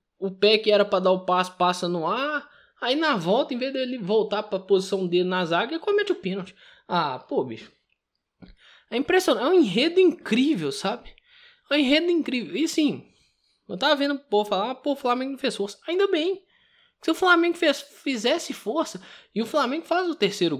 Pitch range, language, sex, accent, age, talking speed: 200-330 Hz, Portuguese, male, Brazilian, 20-39, 205 wpm